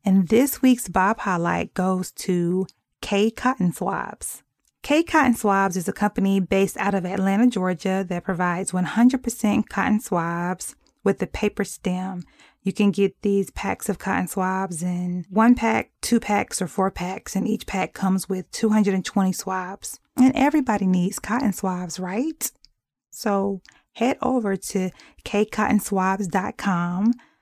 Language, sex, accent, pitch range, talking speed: English, female, American, 185-220 Hz, 135 wpm